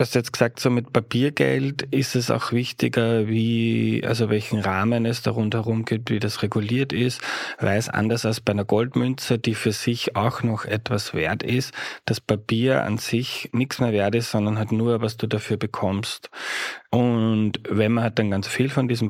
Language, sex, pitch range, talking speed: German, male, 105-120 Hz, 195 wpm